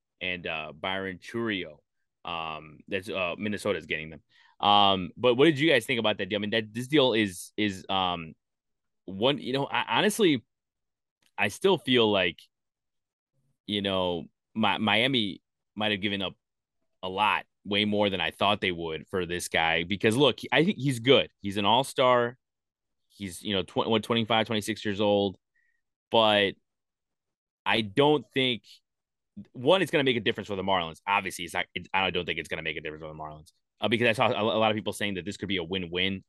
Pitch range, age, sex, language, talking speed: 90-105 Hz, 20-39, male, English, 200 wpm